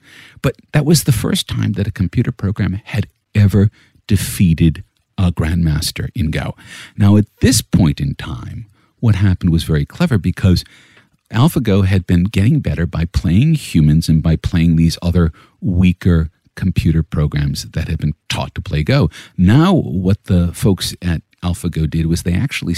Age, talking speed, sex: 50-69, 165 wpm, male